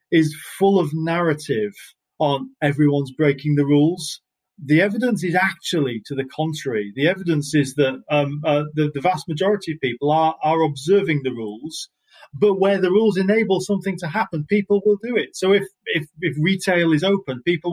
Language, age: English, 30-49